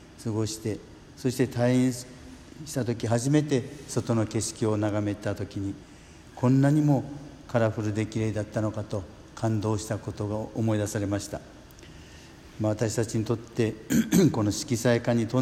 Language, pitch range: Japanese, 105-125 Hz